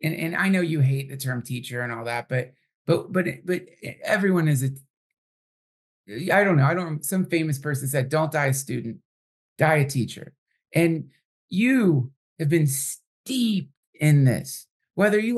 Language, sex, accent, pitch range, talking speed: English, male, American, 135-170 Hz, 170 wpm